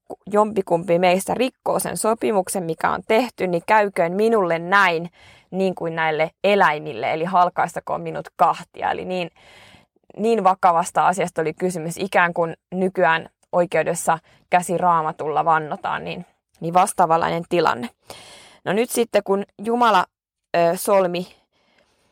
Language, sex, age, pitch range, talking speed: Finnish, female, 20-39, 170-215 Hz, 120 wpm